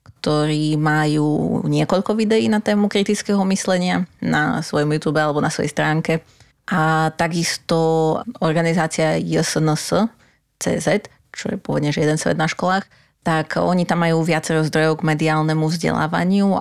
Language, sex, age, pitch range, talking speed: Slovak, female, 30-49, 155-185 Hz, 135 wpm